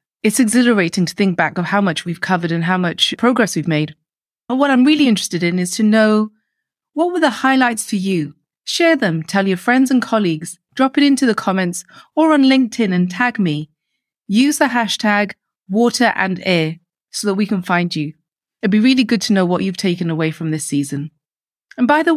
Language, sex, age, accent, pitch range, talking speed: English, female, 30-49, British, 175-245 Hz, 205 wpm